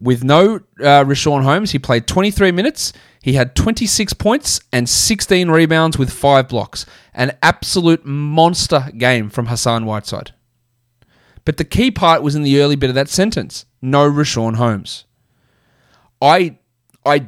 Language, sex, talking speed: English, male, 150 wpm